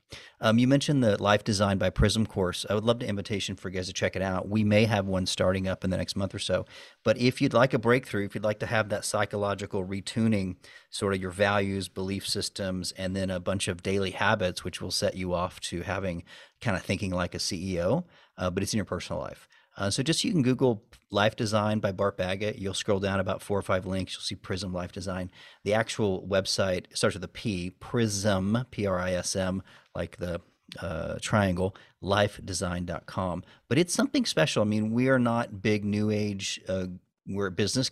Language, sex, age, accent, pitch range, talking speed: English, male, 40-59, American, 90-110 Hz, 210 wpm